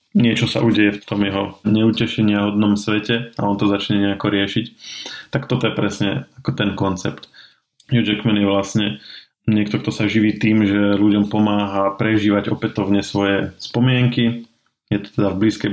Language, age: Slovak, 20-39